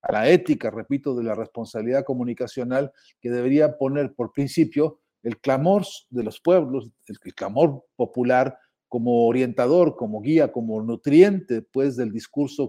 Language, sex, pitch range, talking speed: Spanish, male, 120-150 Hz, 140 wpm